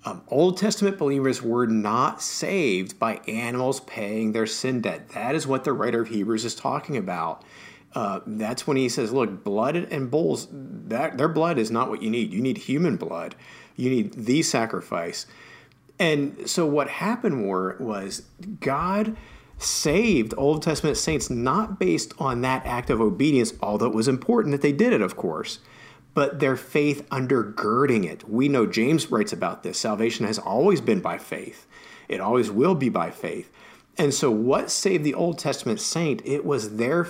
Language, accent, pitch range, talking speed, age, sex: English, American, 115-170 Hz, 180 wpm, 50-69, male